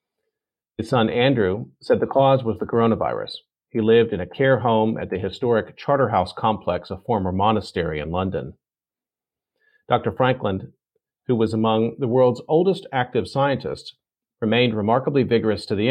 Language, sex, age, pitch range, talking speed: English, male, 40-59, 100-125 Hz, 150 wpm